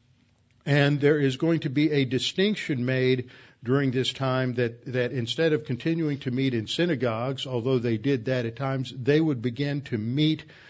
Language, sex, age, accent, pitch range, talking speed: English, male, 50-69, American, 120-145 Hz, 180 wpm